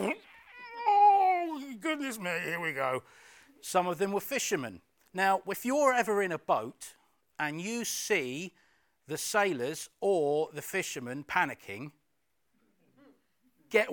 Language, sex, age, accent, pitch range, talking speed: English, male, 40-59, British, 155-210 Hz, 120 wpm